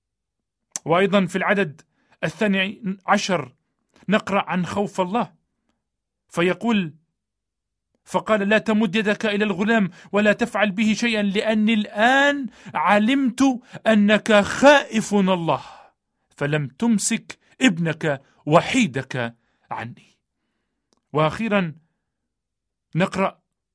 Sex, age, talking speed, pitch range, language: male, 40-59, 85 wpm, 180-225 Hz, Arabic